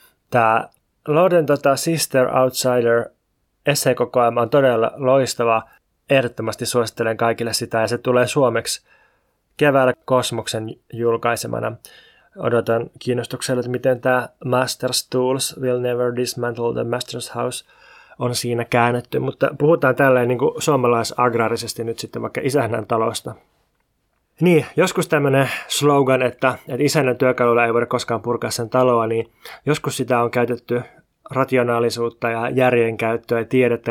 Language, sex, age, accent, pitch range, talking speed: Finnish, male, 20-39, native, 115-135 Hz, 120 wpm